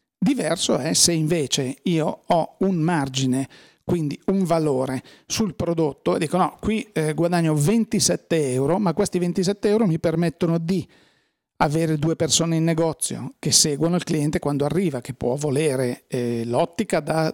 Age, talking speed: 40-59, 150 wpm